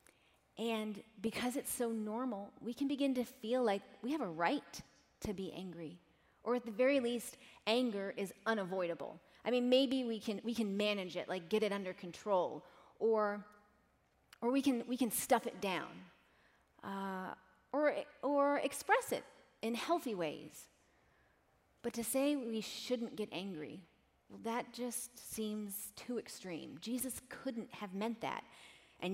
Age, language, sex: 30-49, English, female